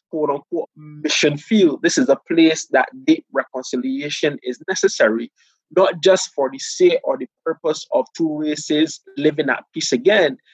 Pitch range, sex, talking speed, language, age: 155-195 Hz, male, 160 wpm, English, 20-39